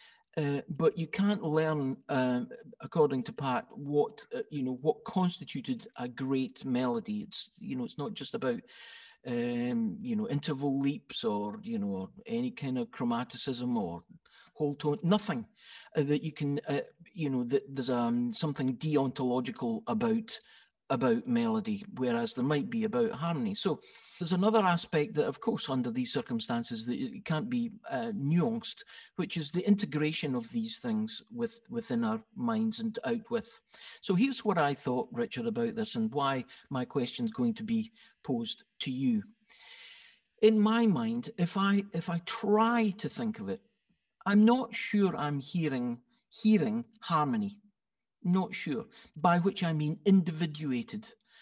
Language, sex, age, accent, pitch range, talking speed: English, male, 50-69, British, 145-230 Hz, 160 wpm